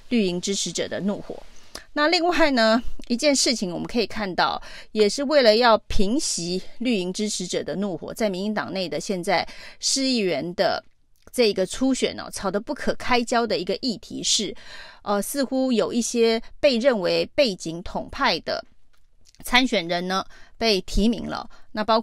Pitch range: 190-235 Hz